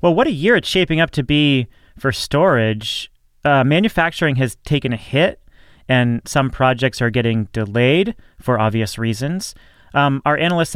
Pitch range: 115-145 Hz